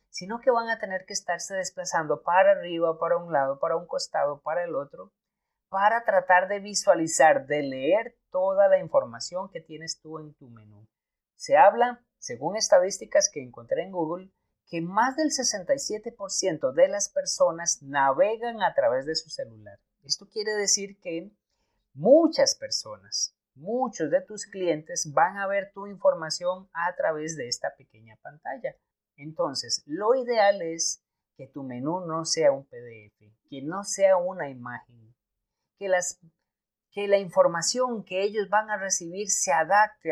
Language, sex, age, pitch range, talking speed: Spanish, male, 30-49, 160-220 Hz, 155 wpm